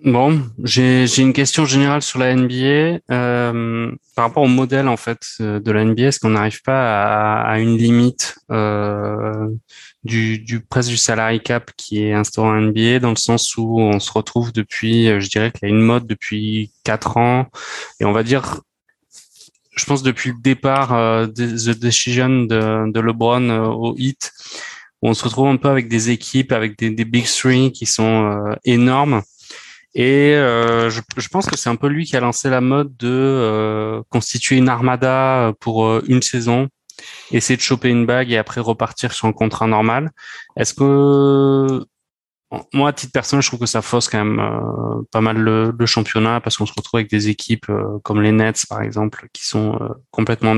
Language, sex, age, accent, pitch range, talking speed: French, male, 20-39, French, 110-130 Hz, 195 wpm